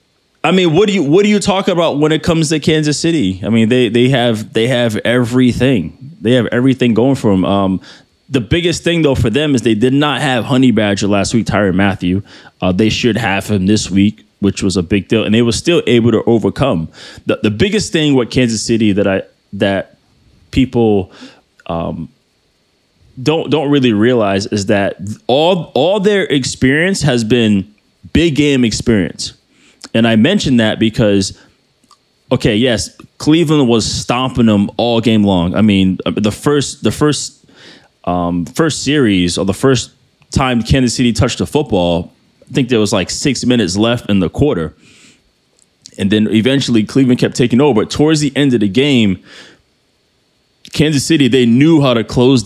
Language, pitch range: English, 100-140 Hz